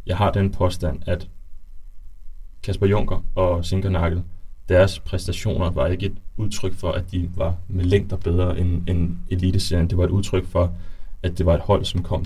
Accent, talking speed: native, 185 wpm